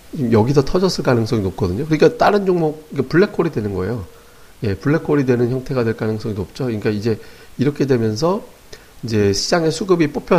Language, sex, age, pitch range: Korean, male, 40-59, 110-155 Hz